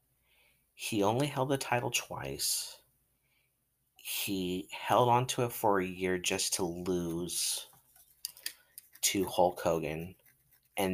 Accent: American